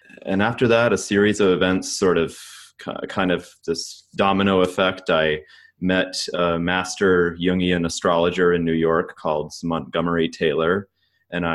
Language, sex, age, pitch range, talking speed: English, male, 30-49, 80-95 Hz, 140 wpm